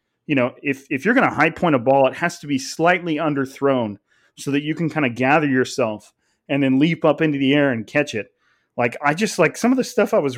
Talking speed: 255 wpm